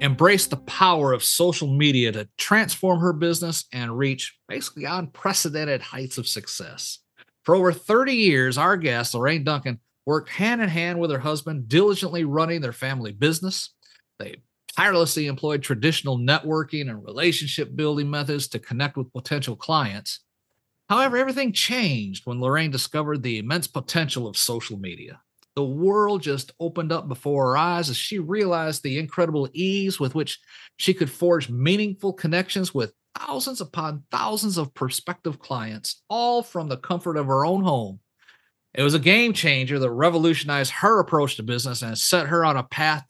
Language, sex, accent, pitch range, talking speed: English, male, American, 130-180 Hz, 155 wpm